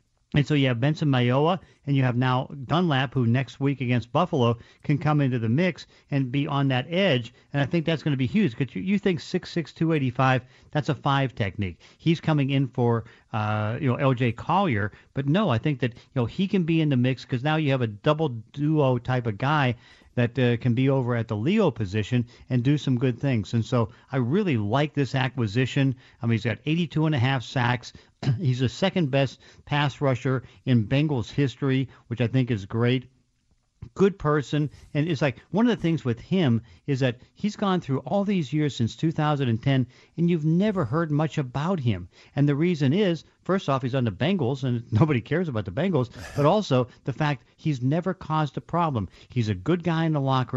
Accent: American